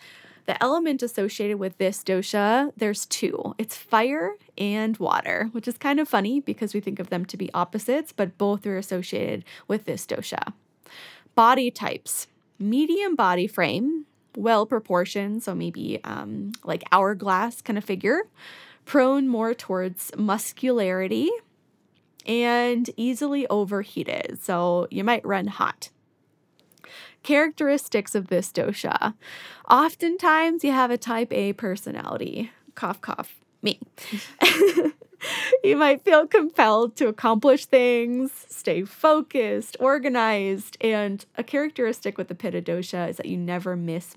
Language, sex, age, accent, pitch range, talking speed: English, female, 10-29, American, 195-270 Hz, 130 wpm